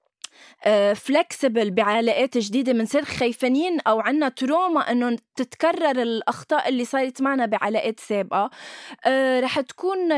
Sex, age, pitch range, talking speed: female, 20-39, 240-300 Hz, 125 wpm